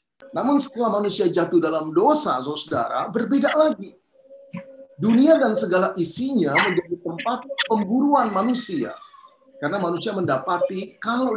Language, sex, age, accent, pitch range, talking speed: English, male, 30-49, Indonesian, 170-250 Hz, 110 wpm